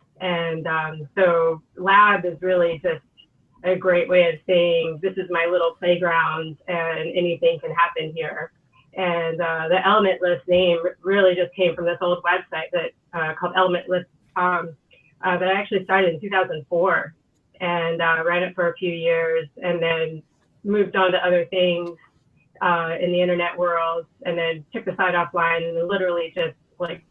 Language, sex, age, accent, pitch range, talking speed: English, female, 30-49, American, 165-185 Hz, 175 wpm